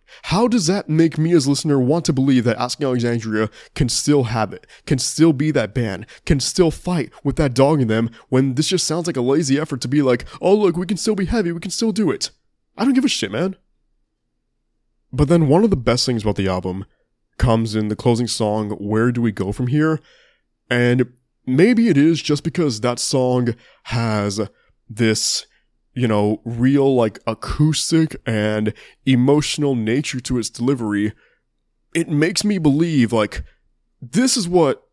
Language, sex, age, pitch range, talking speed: English, male, 20-39, 115-155 Hz, 190 wpm